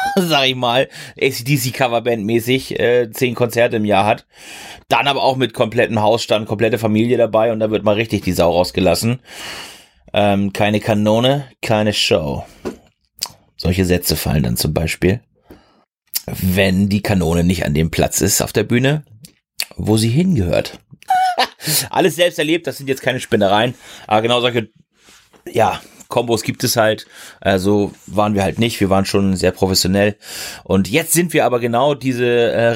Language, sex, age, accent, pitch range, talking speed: German, male, 30-49, German, 95-125 Hz, 155 wpm